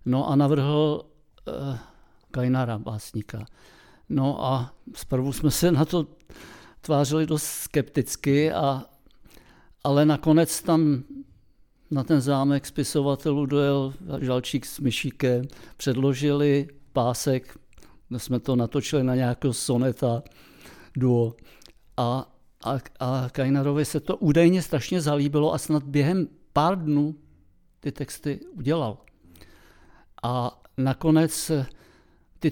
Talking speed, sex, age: 105 wpm, male, 60-79